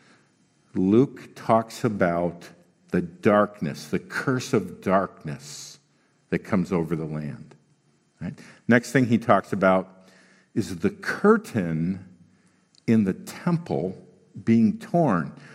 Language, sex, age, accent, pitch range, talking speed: English, male, 50-69, American, 100-135 Hz, 105 wpm